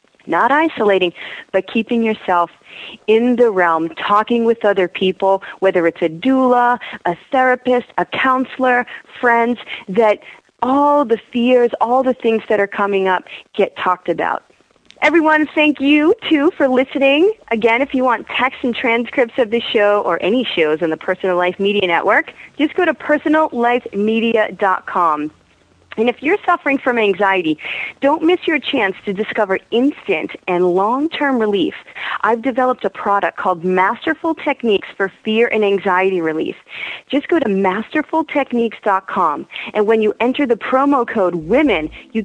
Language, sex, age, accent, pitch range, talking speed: English, female, 30-49, American, 195-265 Hz, 150 wpm